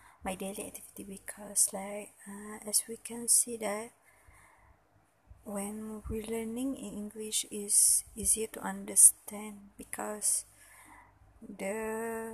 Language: English